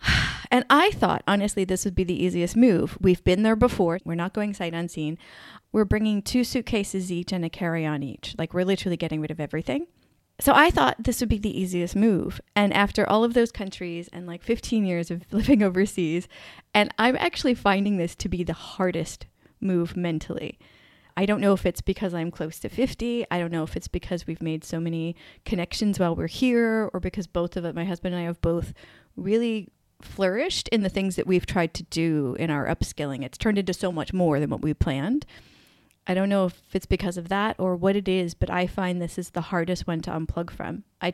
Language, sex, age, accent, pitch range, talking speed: English, female, 30-49, American, 170-205 Hz, 220 wpm